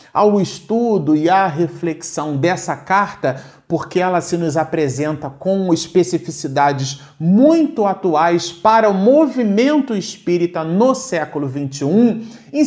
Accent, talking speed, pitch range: Brazilian, 115 wpm, 150-195 Hz